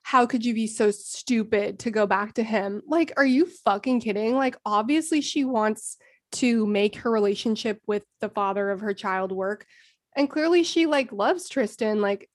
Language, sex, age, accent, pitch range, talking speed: English, female, 20-39, American, 210-265 Hz, 185 wpm